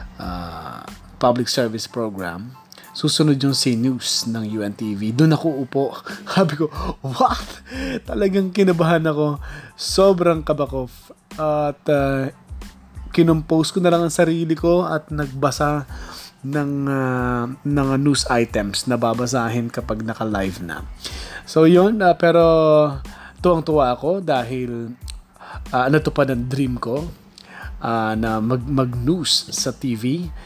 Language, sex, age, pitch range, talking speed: Filipino, male, 20-39, 115-150 Hz, 120 wpm